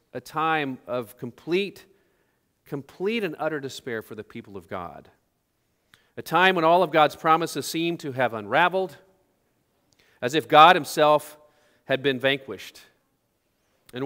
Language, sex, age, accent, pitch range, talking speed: English, male, 40-59, American, 115-160 Hz, 135 wpm